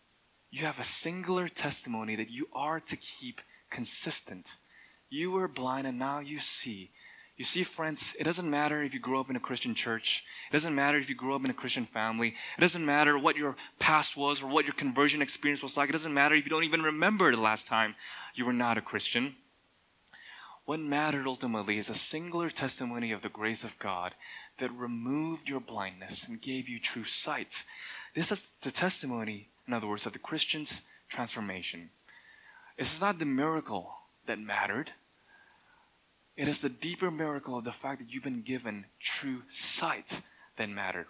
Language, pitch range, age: English, 125-165 Hz, 20-39